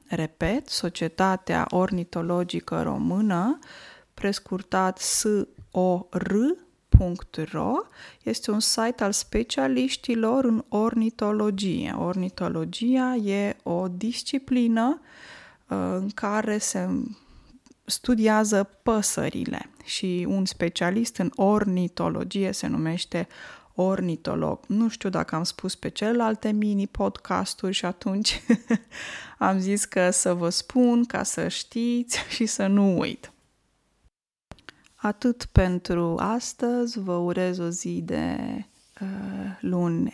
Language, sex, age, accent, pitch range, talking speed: Romanian, female, 20-39, native, 185-240 Hz, 95 wpm